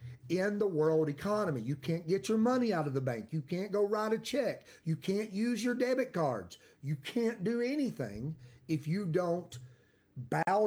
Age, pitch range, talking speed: 50-69, 135-205 Hz, 185 wpm